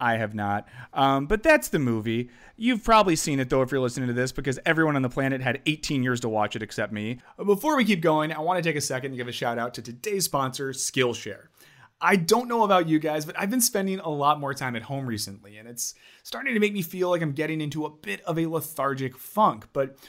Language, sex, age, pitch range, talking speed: English, male, 30-49, 120-170 Hz, 255 wpm